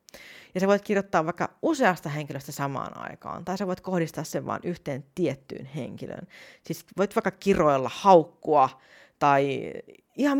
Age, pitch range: 40-59, 160-255 Hz